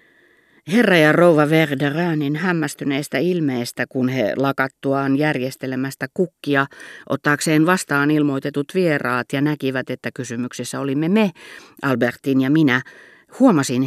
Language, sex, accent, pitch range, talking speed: Finnish, female, native, 125-155 Hz, 110 wpm